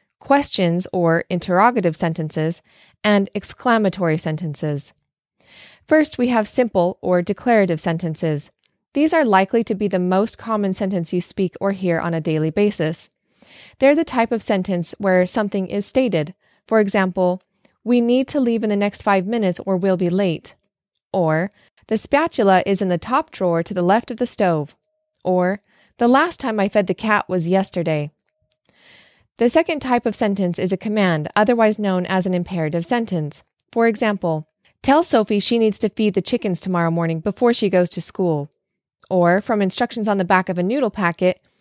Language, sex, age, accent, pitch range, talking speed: English, female, 20-39, American, 180-230 Hz, 175 wpm